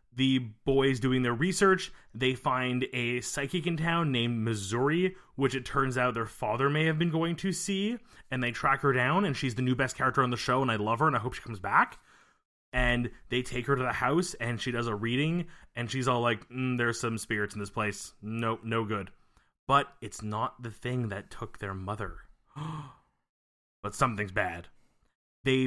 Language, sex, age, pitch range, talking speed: English, male, 20-39, 120-175 Hz, 205 wpm